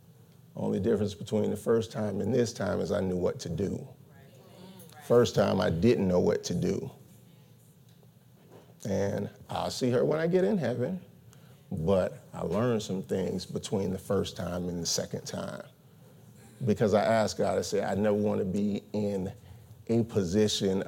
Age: 40-59